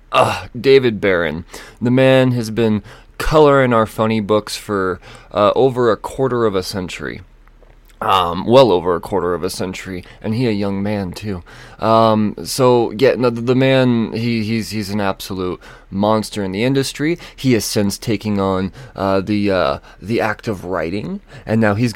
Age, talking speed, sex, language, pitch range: 20-39, 170 wpm, male, English, 100-125 Hz